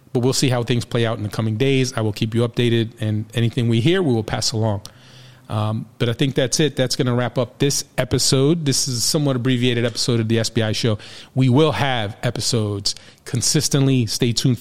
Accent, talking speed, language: American, 220 wpm, English